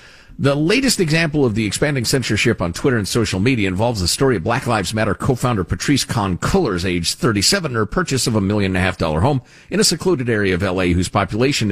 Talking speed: 200 wpm